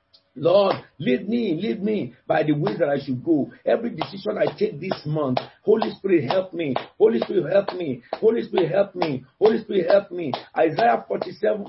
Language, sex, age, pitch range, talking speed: English, male, 50-69, 150-225 Hz, 185 wpm